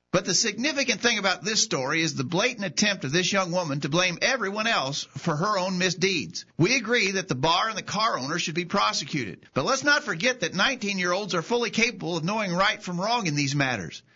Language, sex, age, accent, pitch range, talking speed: English, male, 50-69, American, 170-225 Hz, 220 wpm